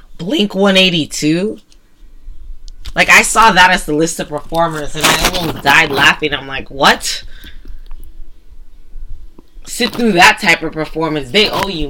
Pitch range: 140-185 Hz